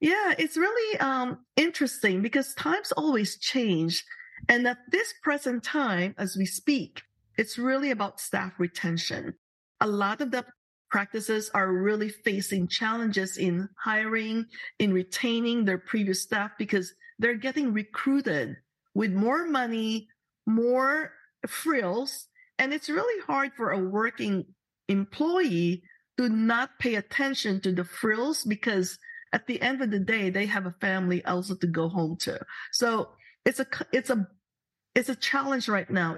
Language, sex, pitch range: English, female, 195-260 Hz